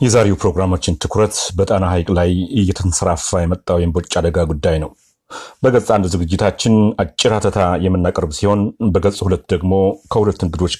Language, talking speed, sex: Amharic, 110 wpm, male